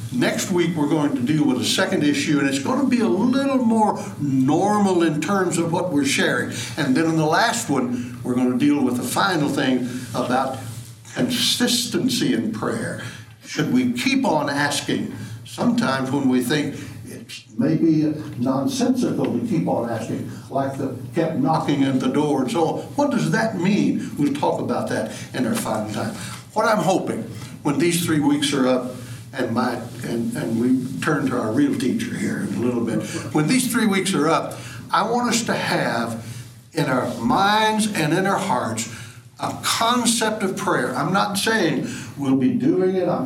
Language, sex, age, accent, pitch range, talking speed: English, male, 60-79, American, 125-175 Hz, 185 wpm